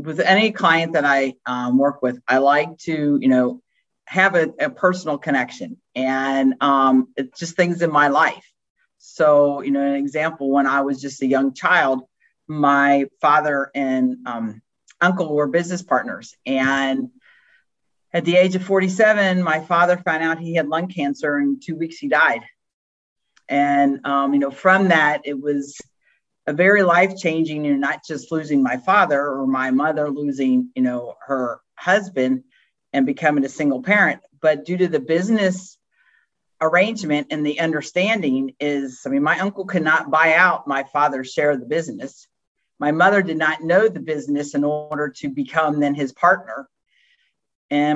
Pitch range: 140-175 Hz